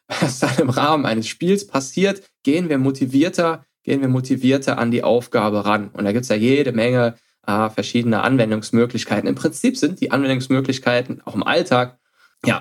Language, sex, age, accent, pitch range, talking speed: German, male, 10-29, German, 115-150 Hz, 170 wpm